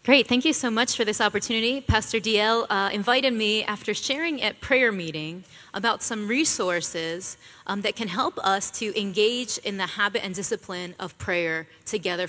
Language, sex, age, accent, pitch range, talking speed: English, female, 20-39, American, 200-255 Hz, 175 wpm